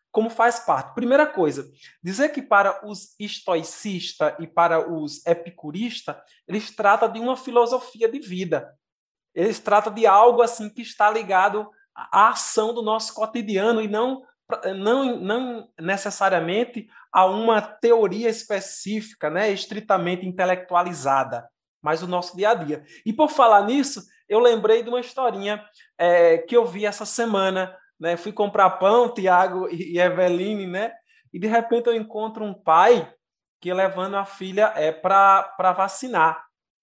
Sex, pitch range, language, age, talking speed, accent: male, 185-230 Hz, Portuguese, 20-39, 145 wpm, Brazilian